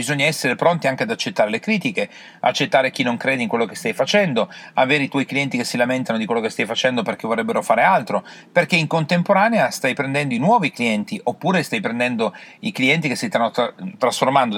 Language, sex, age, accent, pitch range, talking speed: Italian, male, 40-59, native, 120-180 Hz, 205 wpm